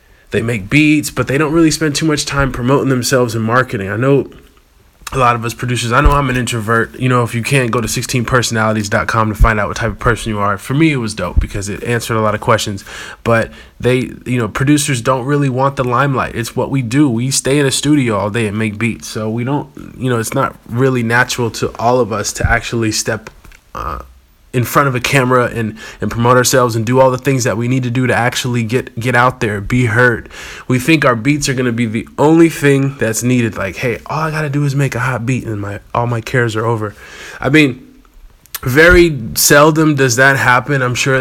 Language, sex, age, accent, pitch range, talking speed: English, male, 20-39, American, 115-135 Hz, 240 wpm